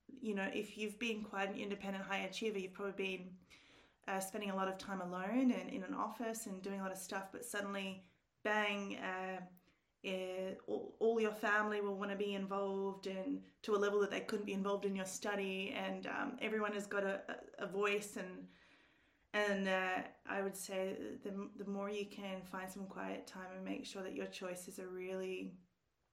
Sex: female